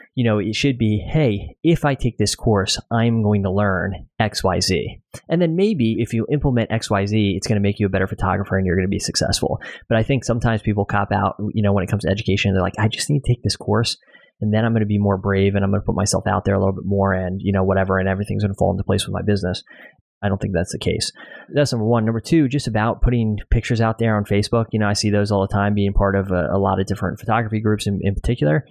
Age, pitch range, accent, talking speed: 20-39, 100-120 Hz, American, 280 wpm